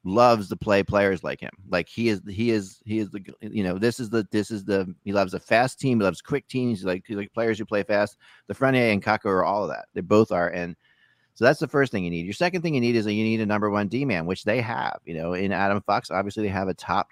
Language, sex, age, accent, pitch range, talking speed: English, male, 40-59, American, 95-115 Hz, 300 wpm